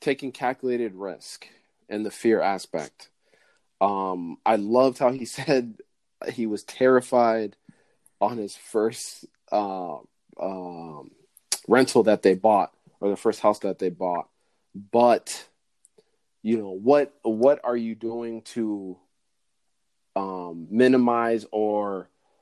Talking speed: 120 wpm